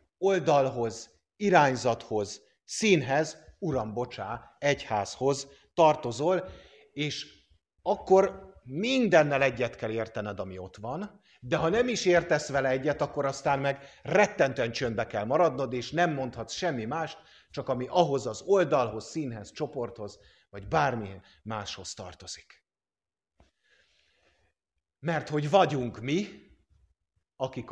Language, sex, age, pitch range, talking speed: English, male, 50-69, 110-155 Hz, 110 wpm